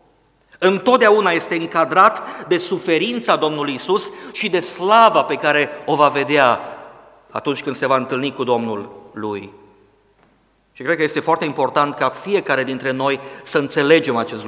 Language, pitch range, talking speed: Romanian, 140-175 Hz, 150 wpm